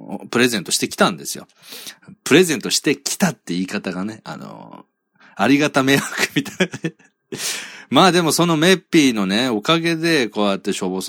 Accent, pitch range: native, 100-165 Hz